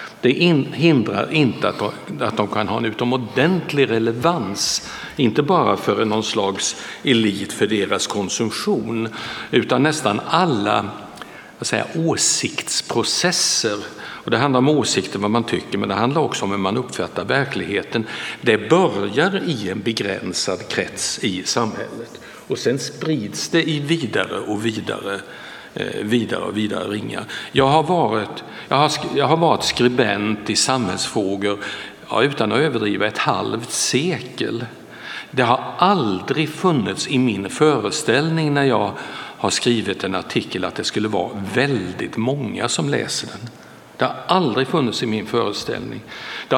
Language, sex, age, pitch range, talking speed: Swedish, male, 60-79, 105-150 Hz, 140 wpm